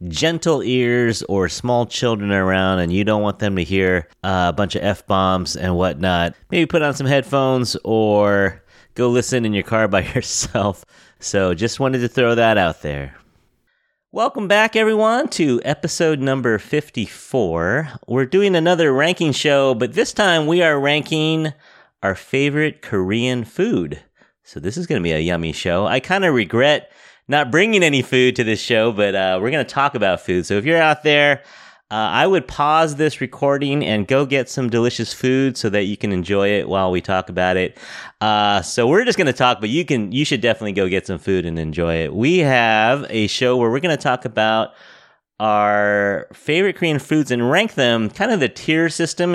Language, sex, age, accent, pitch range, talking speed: English, male, 30-49, American, 100-145 Hz, 195 wpm